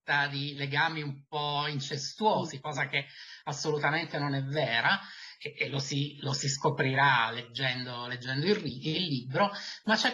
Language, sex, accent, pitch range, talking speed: Italian, male, native, 145-205 Hz, 150 wpm